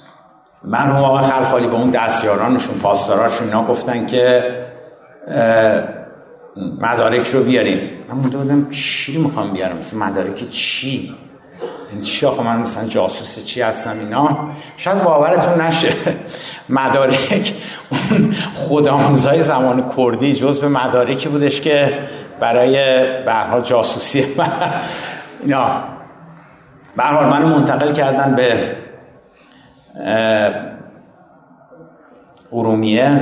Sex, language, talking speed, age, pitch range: male, Persian, 95 wpm, 60-79, 125-150 Hz